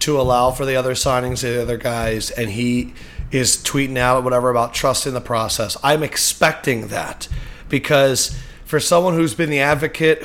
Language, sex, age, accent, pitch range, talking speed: English, male, 30-49, American, 130-155 Hz, 180 wpm